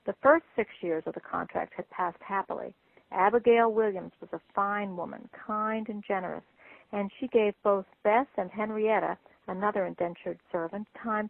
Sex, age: female, 60-79